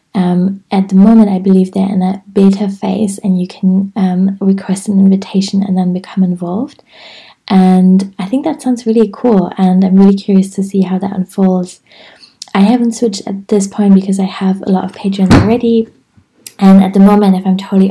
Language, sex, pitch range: English, female, 185-195 Hz